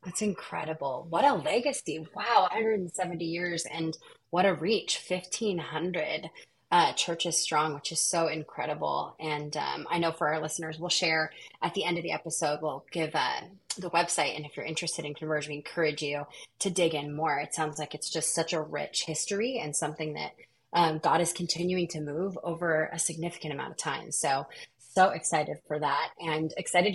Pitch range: 155-190 Hz